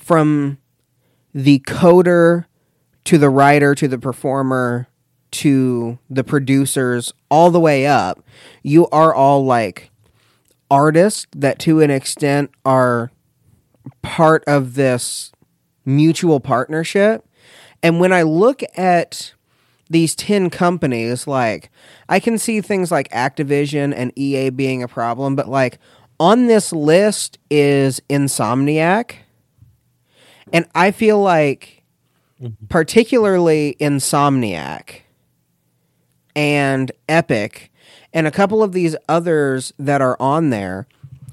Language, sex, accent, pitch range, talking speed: English, male, American, 130-170 Hz, 110 wpm